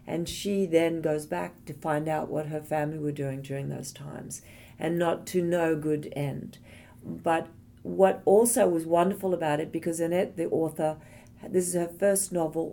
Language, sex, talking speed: English, female, 180 wpm